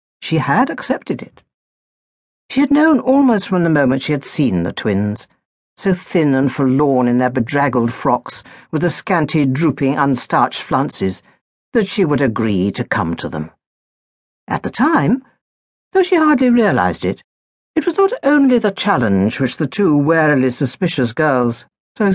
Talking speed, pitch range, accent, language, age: 160 wpm, 120-205 Hz, British, English, 60-79